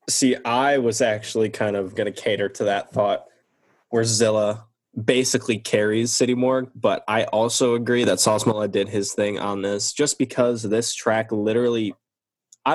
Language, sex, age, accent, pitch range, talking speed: English, male, 10-29, American, 100-120 Hz, 165 wpm